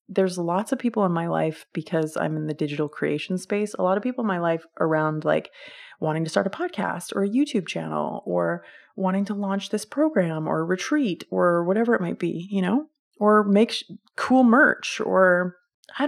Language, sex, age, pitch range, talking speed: English, female, 30-49, 175-240 Hz, 200 wpm